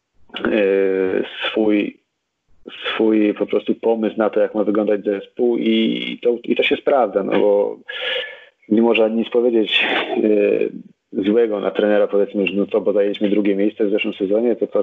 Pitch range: 105-115 Hz